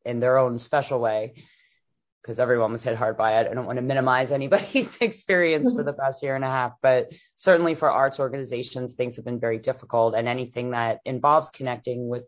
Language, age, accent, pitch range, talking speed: English, 30-49, American, 120-135 Hz, 205 wpm